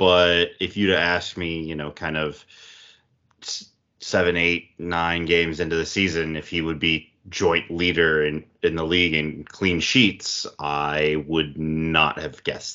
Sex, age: male, 30-49